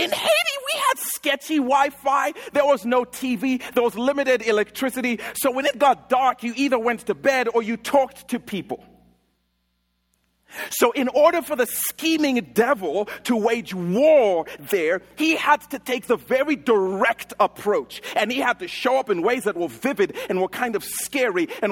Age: 40-59